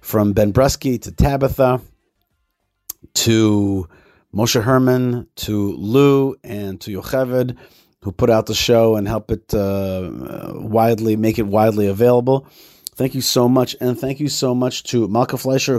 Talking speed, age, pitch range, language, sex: 150 wpm, 30-49, 105-125 Hz, English, male